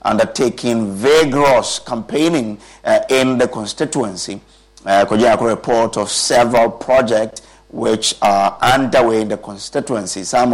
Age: 50-69